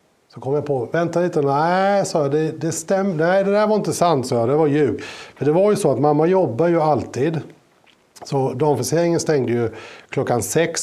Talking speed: 210 wpm